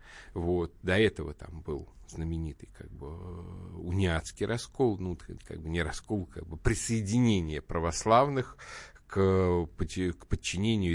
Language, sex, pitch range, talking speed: Russian, male, 80-105 Hz, 125 wpm